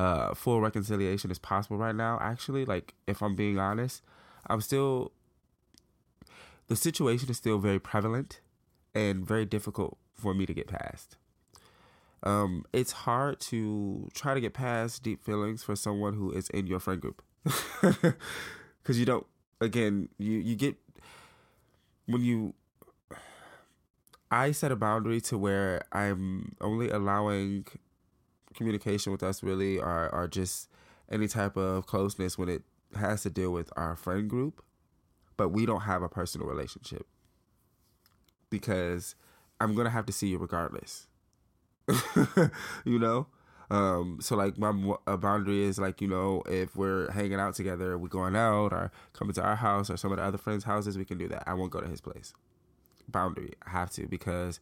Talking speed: 165 wpm